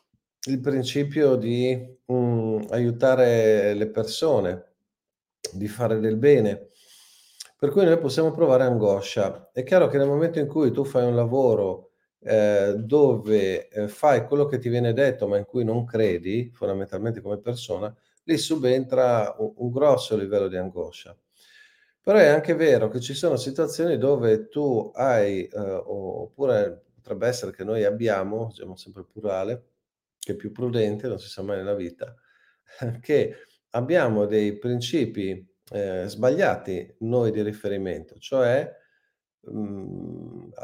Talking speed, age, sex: 140 wpm, 40-59, male